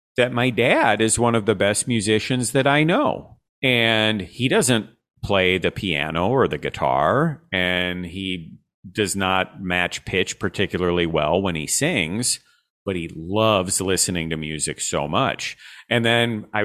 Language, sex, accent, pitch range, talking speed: English, male, American, 95-125 Hz, 155 wpm